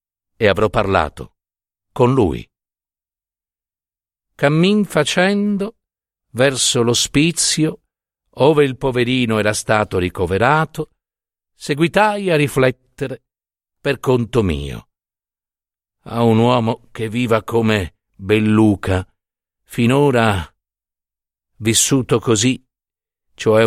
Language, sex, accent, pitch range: Italian, male, native, 110-150 Hz